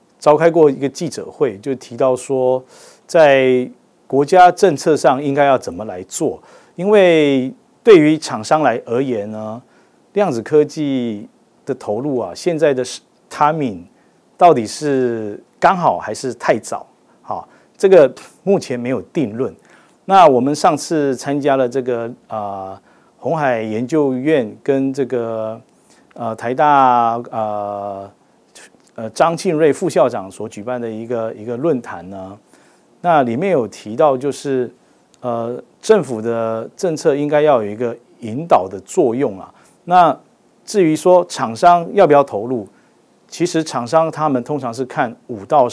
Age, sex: 50-69, male